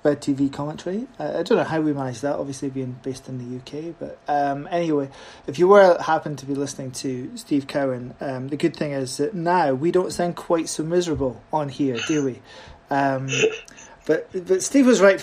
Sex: male